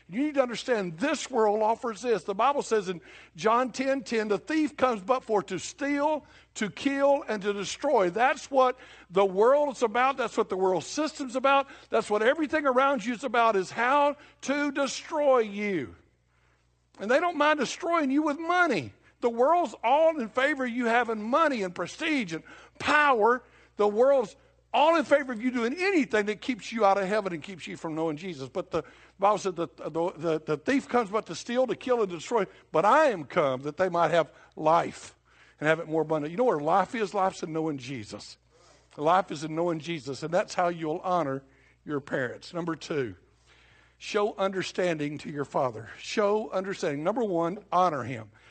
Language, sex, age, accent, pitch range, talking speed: English, male, 60-79, American, 170-260 Hz, 200 wpm